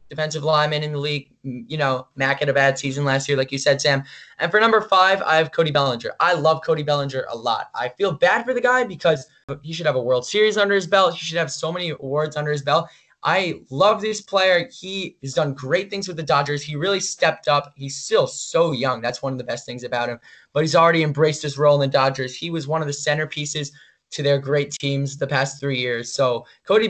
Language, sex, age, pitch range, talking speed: English, male, 10-29, 135-170 Hz, 245 wpm